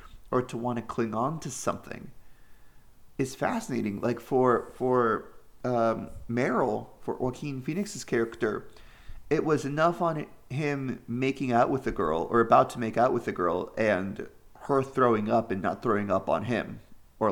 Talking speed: 165 wpm